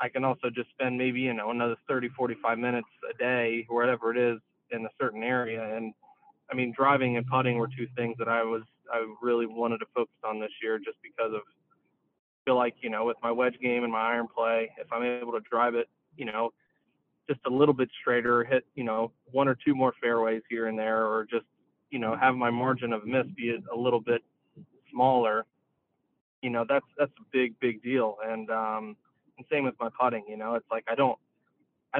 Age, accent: 20-39, American